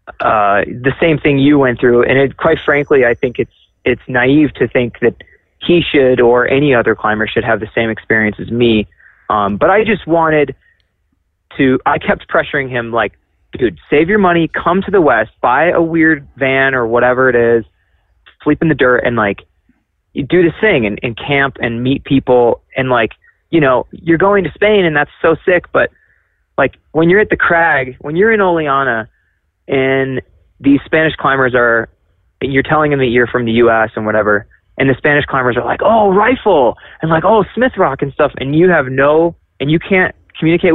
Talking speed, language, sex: 200 wpm, English, male